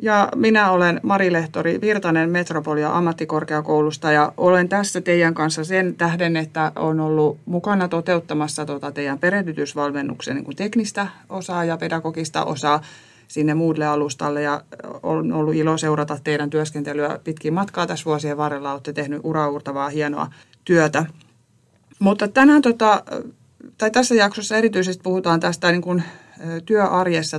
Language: Finnish